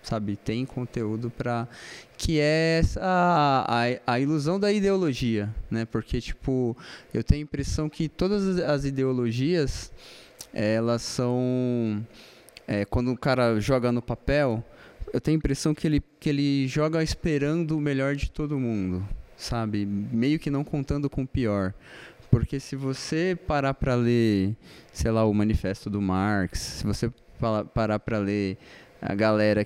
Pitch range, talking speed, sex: 115-175 Hz, 150 wpm, male